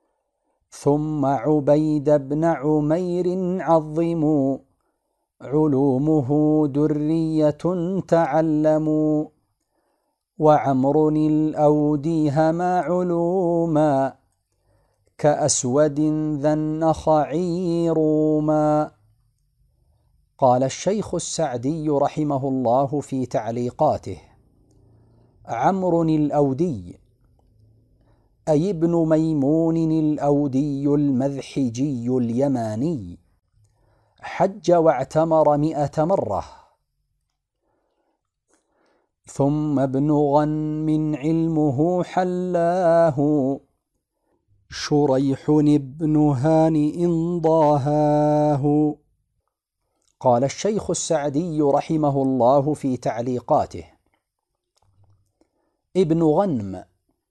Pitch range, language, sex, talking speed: 135-160 Hz, Arabic, male, 55 wpm